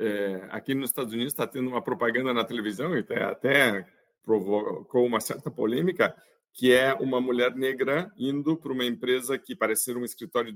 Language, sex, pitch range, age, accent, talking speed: Portuguese, male, 130-185 Hz, 50-69, Brazilian, 180 wpm